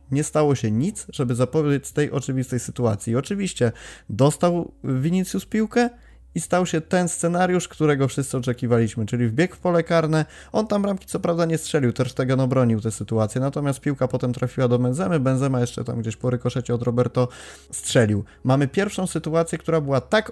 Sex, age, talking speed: male, 20-39, 175 wpm